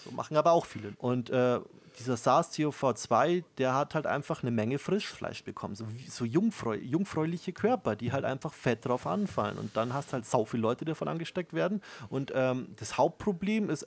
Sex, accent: male, German